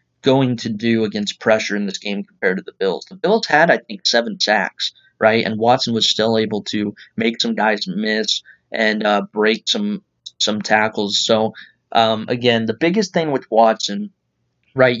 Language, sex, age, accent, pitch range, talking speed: English, male, 20-39, American, 105-120 Hz, 180 wpm